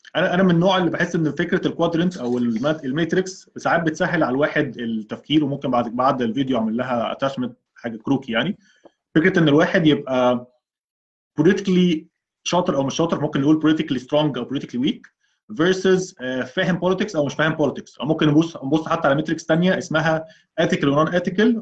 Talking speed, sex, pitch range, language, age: 165 wpm, male, 140-170 Hz, Arabic, 20-39